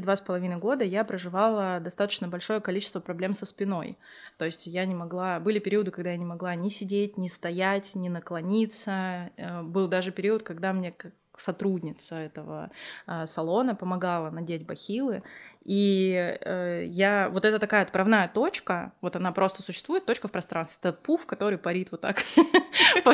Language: Russian